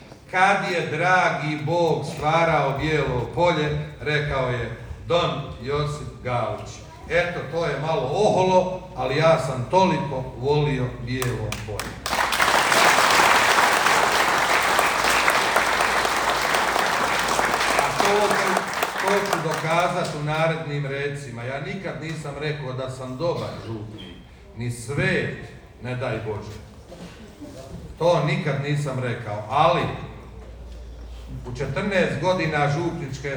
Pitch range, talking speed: 120-155 Hz, 95 wpm